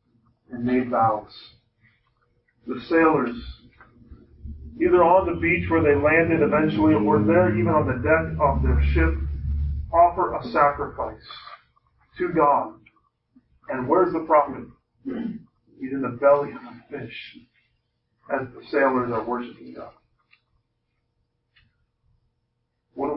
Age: 40-59